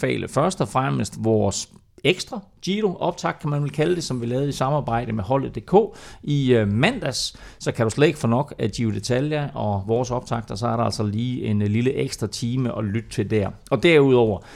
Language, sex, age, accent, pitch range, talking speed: Danish, male, 30-49, native, 110-145 Hz, 200 wpm